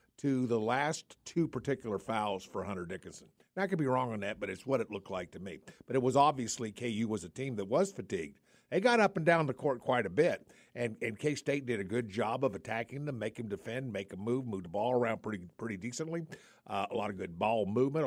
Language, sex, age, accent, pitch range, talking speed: English, male, 50-69, American, 120-185 Hz, 250 wpm